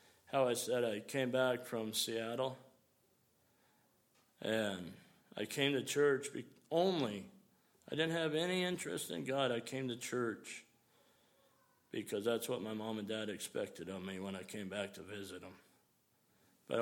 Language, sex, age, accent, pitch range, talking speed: English, male, 50-69, American, 110-135 Hz, 150 wpm